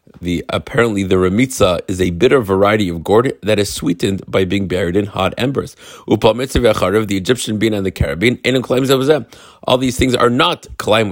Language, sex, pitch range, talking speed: English, male, 95-115 Hz, 195 wpm